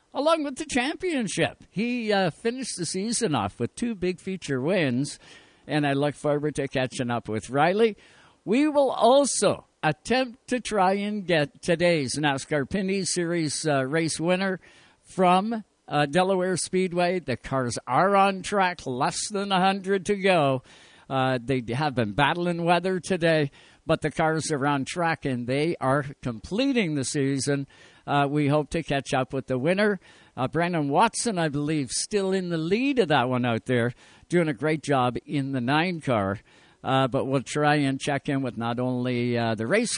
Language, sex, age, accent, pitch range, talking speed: English, male, 60-79, American, 135-190 Hz, 175 wpm